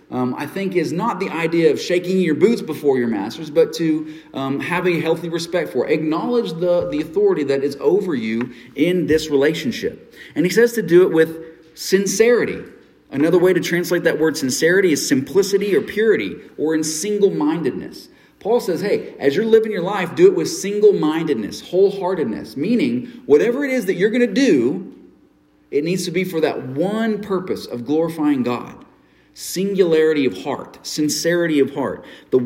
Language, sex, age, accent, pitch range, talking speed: English, male, 40-59, American, 140-210 Hz, 180 wpm